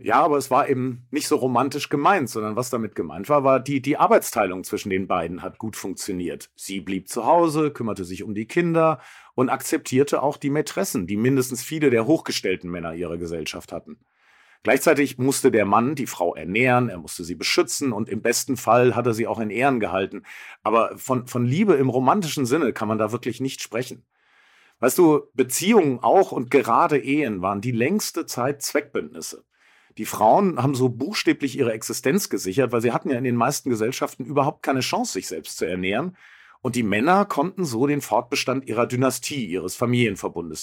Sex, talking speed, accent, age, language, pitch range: male, 190 wpm, German, 40-59, German, 115-145 Hz